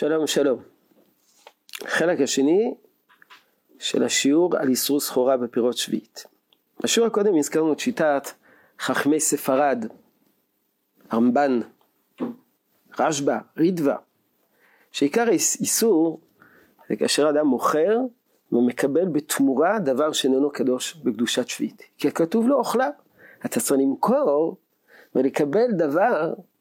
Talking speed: 95 wpm